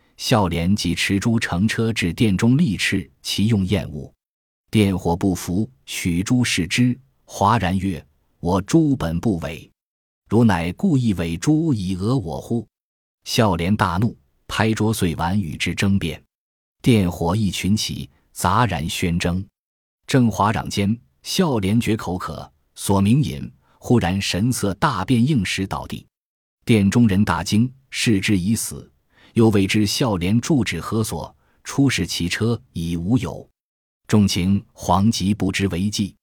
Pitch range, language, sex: 90-115 Hz, Chinese, male